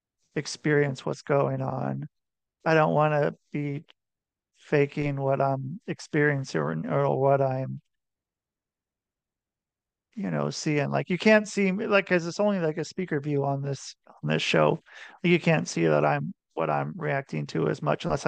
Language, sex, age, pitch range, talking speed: English, male, 40-59, 135-170 Hz, 160 wpm